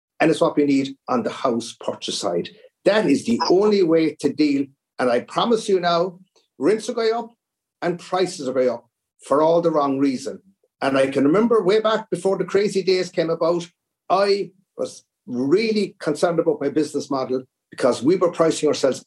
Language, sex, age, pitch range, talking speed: English, male, 50-69, 140-195 Hz, 190 wpm